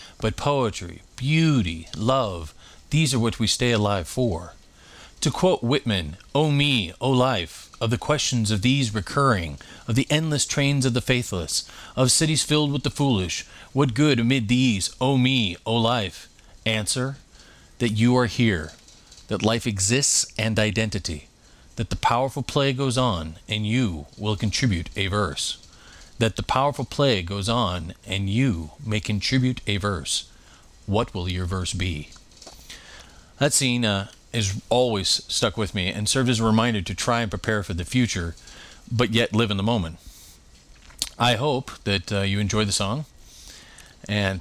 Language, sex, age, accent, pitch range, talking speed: English, male, 40-59, American, 95-125 Hz, 160 wpm